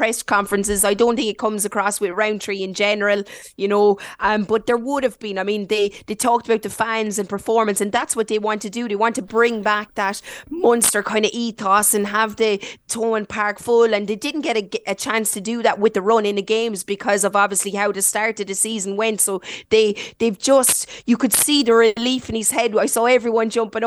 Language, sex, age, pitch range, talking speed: English, female, 30-49, 205-230 Hz, 240 wpm